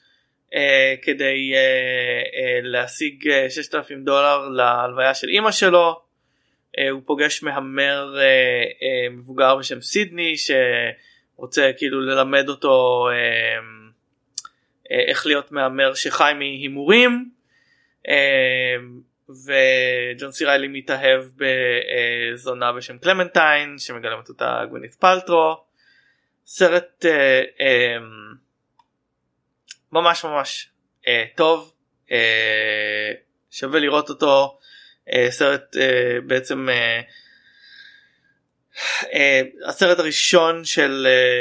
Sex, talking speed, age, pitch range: male, 95 wpm, 20-39, 130-165 Hz